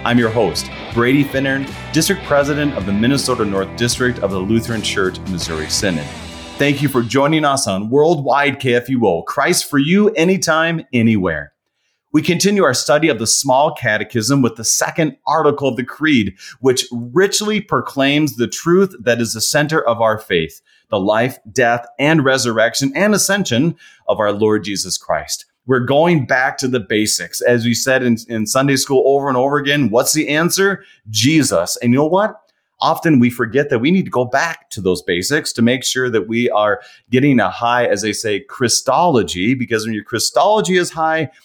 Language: English